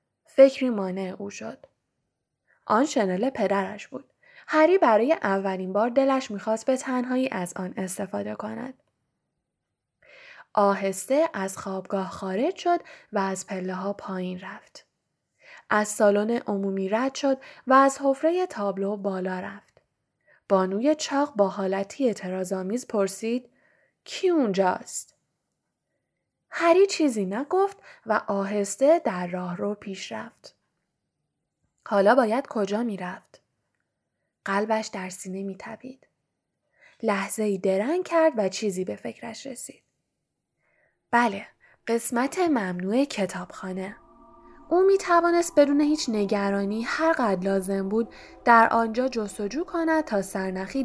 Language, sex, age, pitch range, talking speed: Persian, female, 10-29, 195-275 Hz, 115 wpm